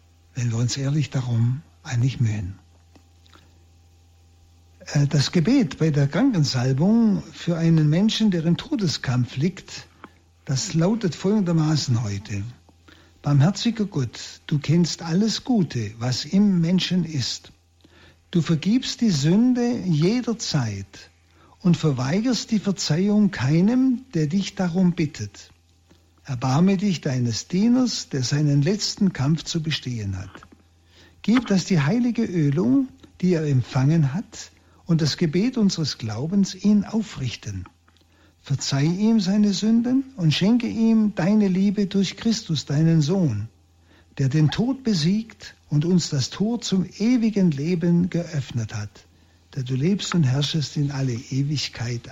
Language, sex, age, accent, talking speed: German, male, 60-79, German, 125 wpm